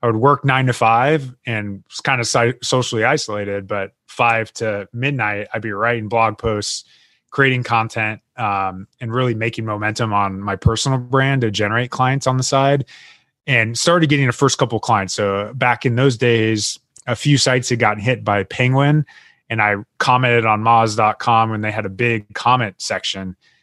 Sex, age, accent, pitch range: male, 20-39, American, 105-125 Hz